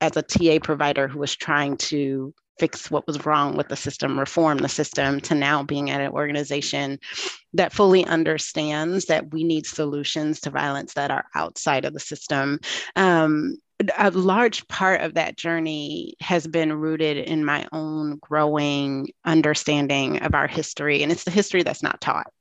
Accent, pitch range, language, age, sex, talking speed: American, 145-170 Hz, English, 30-49, female, 170 wpm